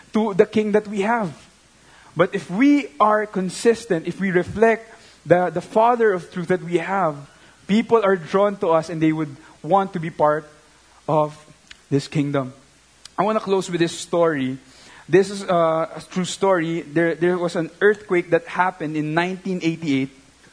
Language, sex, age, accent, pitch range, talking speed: English, male, 20-39, Filipino, 165-200 Hz, 170 wpm